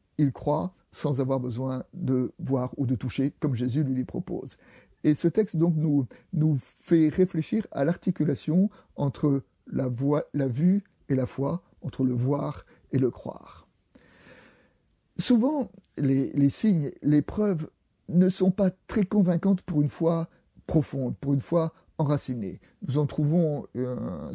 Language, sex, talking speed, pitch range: French, male, 150 wpm, 135-165 Hz